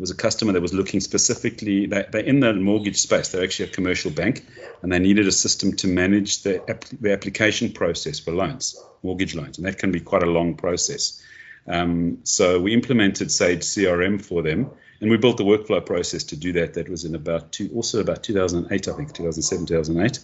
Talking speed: 205 wpm